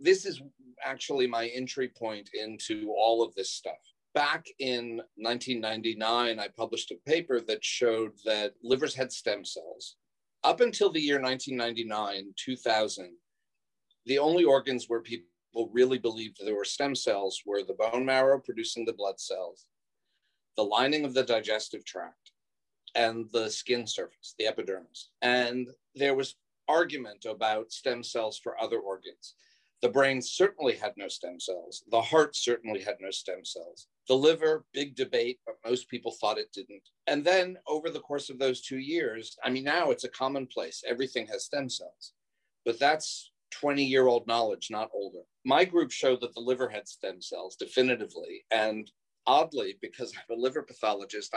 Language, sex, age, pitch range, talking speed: English, male, 40-59, 115-155 Hz, 165 wpm